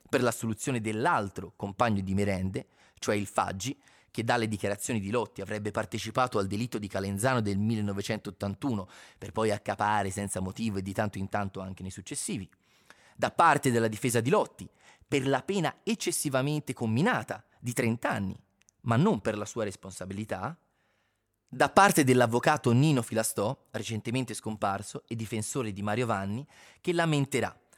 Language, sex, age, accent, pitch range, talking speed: Italian, male, 30-49, native, 100-125 Hz, 150 wpm